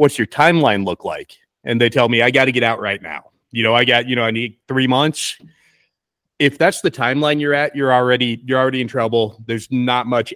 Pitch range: 115-145 Hz